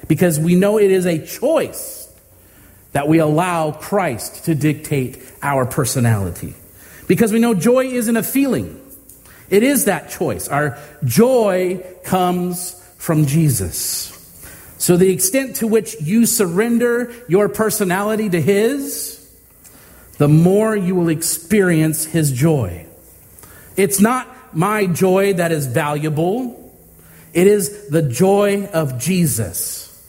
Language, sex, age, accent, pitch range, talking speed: English, male, 40-59, American, 130-200 Hz, 125 wpm